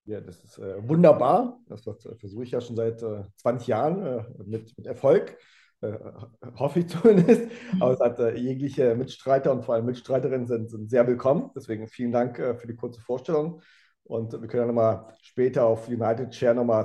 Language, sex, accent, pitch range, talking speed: German, male, German, 115-135 Hz, 200 wpm